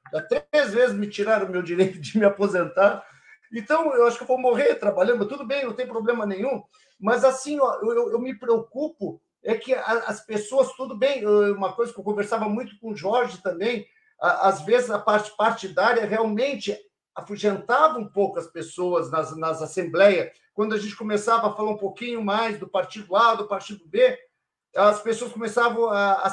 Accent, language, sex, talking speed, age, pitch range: Brazilian, Portuguese, male, 190 wpm, 50-69, 195-270 Hz